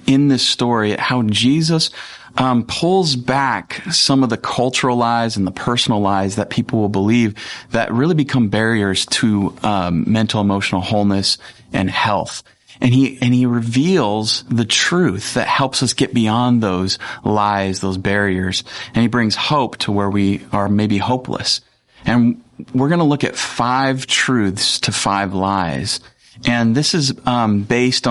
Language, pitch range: English, 105-125 Hz